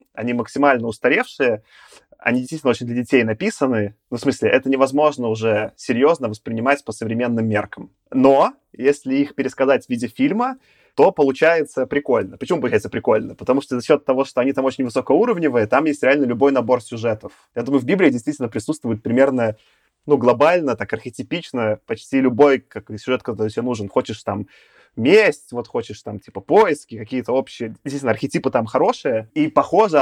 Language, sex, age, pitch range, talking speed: Russian, male, 20-39, 120-140 Hz, 165 wpm